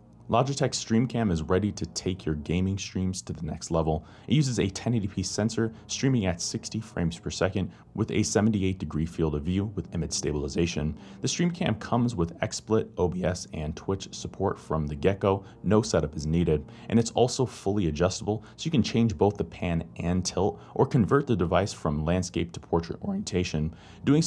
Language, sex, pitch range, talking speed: English, male, 80-110 Hz, 185 wpm